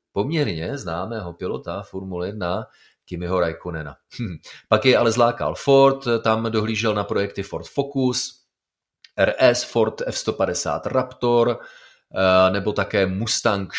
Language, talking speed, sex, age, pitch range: Czech, 115 wpm, male, 30-49, 95-110 Hz